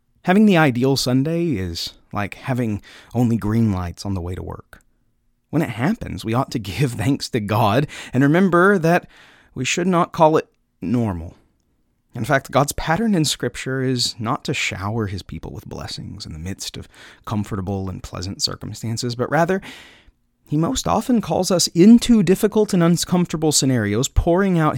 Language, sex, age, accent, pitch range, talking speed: English, male, 30-49, American, 100-150 Hz, 170 wpm